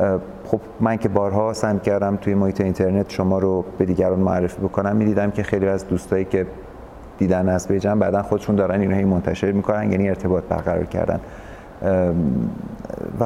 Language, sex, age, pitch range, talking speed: Persian, male, 30-49, 85-100 Hz, 165 wpm